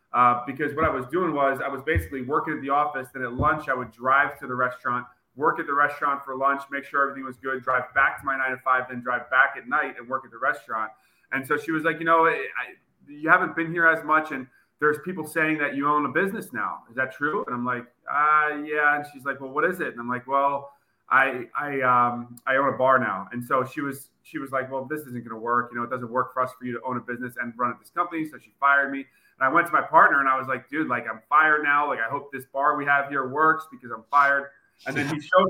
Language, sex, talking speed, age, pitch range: English, male, 280 wpm, 30-49, 125-145 Hz